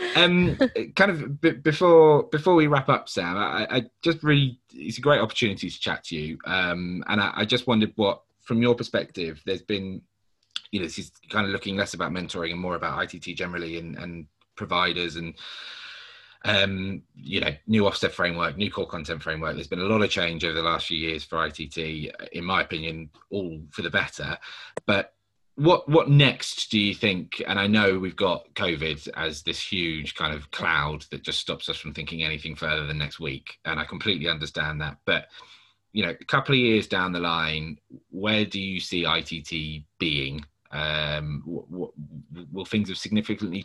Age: 20-39